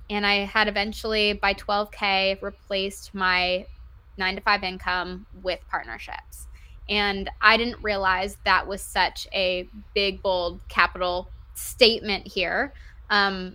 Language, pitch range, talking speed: English, 190-235 Hz, 125 wpm